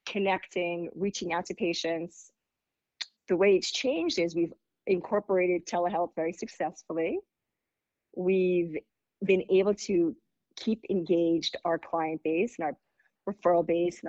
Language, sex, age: English, female, 40-59